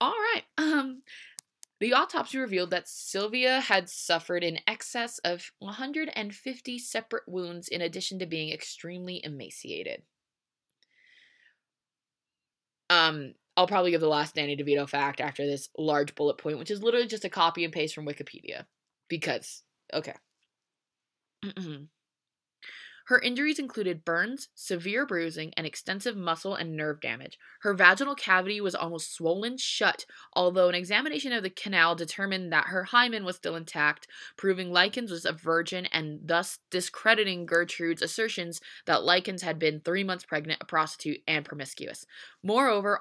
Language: English